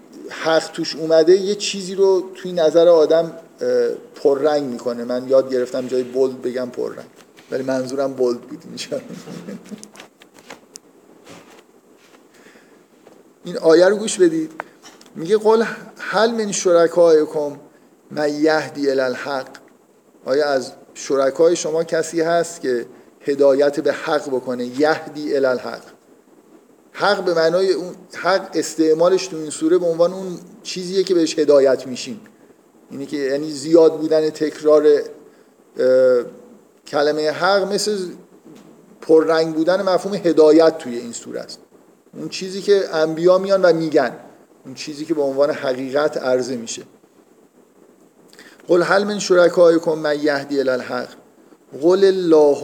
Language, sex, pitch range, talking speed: Persian, male, 140-185 Hz, 120 wpm